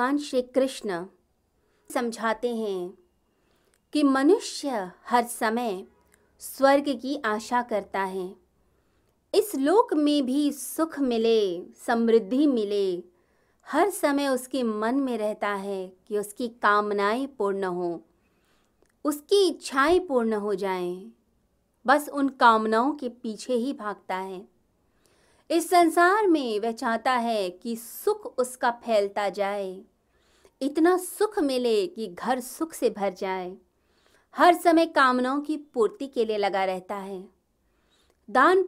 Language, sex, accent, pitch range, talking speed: Hindi, female, native, 205-280 Hz, 120 wpm